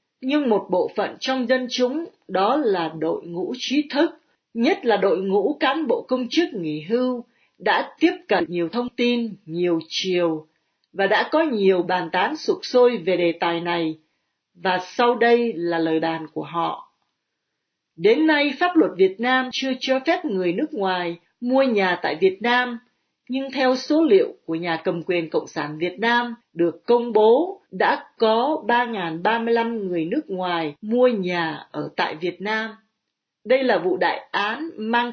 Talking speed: 175 wpm